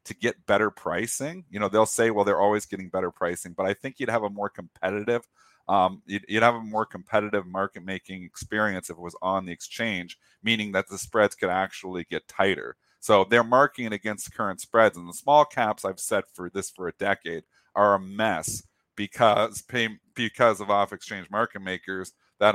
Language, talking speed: English, 200 wpm